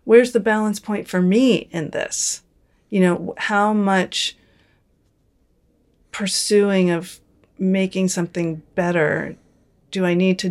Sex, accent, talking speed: female, American, 120 wpm